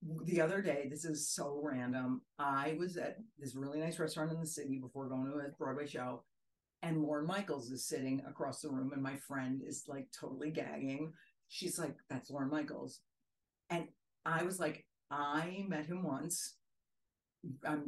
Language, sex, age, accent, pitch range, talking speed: English, female, 50-69, American, 135-160 Hz, 175 wpm